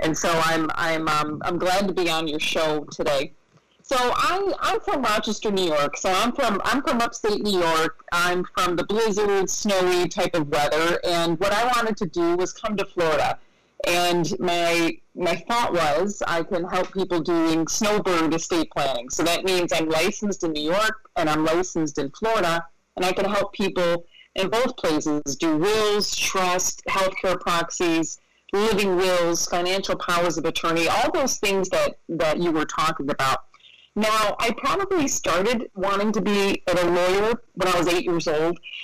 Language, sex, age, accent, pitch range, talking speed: English, female, 40-59, American, 160-200 Hz, 180 wpm